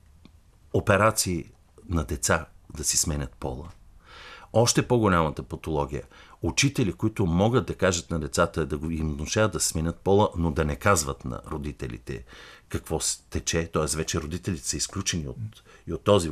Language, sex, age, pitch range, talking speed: Bulgarian, male, 50-69, 85-135 Hz, 150 wpm